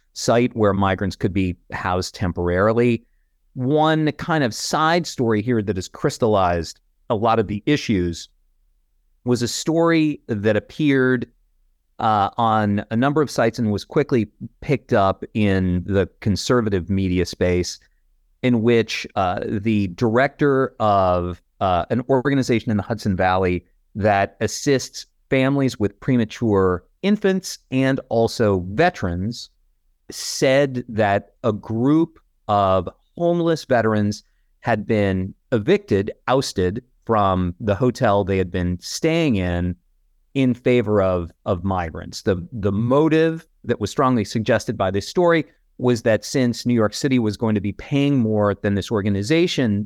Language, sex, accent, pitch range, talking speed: English, male, American, 95-125 Hz, 135 wpm